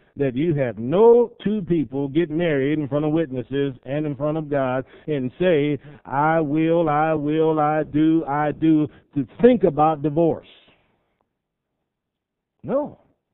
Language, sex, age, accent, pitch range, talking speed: English, male, 50-69, American, 155-210 Hz, 145 wpm